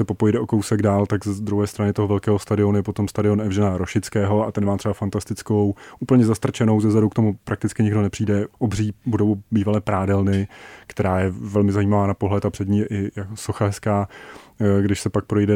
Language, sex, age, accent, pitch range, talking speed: Czech, male, 30-49, native, 100-110 Hz, 185 wpm